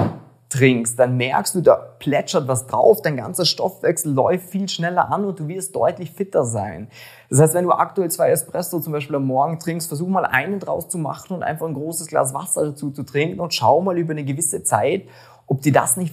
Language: German